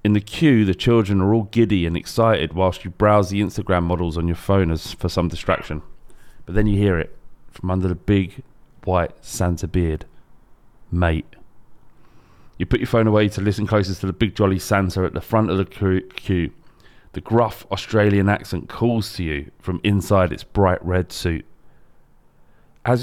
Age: 30-49